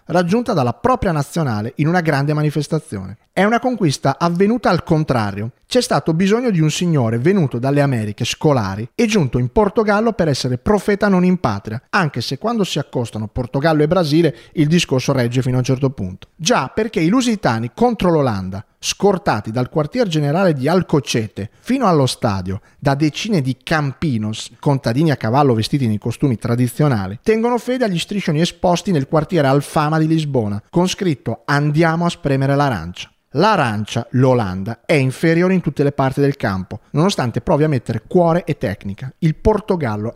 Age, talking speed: 30-49, 165 wpm